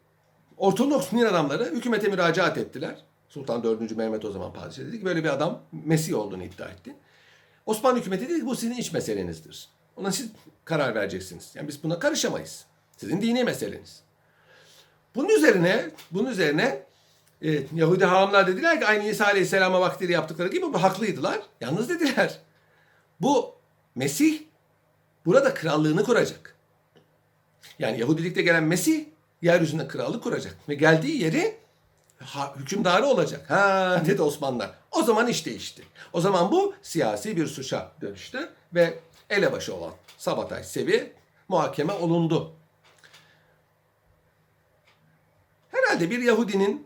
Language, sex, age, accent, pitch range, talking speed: Turkish, male, 60-79, native, 165-240 Hz, 125 wpm